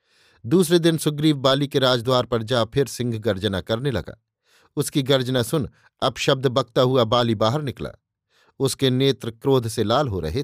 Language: Hindi